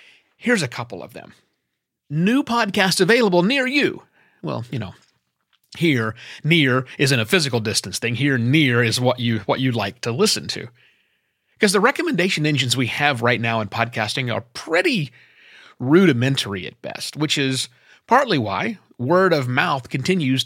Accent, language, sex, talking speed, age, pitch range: American, English, male, 155 wpm, 30-49, 120-175 Hz